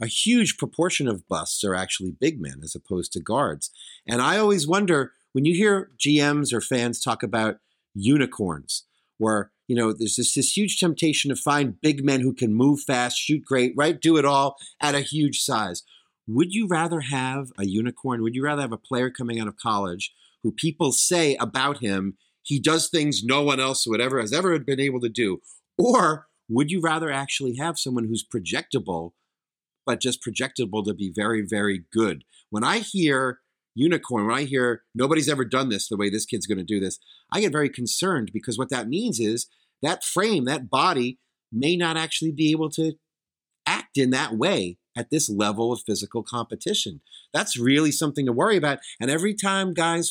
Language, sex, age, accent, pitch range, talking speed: English, male, 40-59, American, 115-155 Hz, 195 wpm